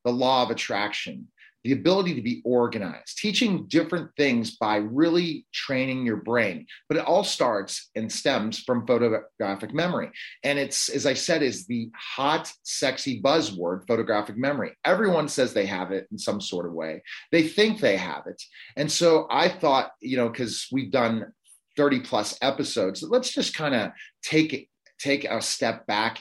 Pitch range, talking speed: 115-150 Hz, 170 wpm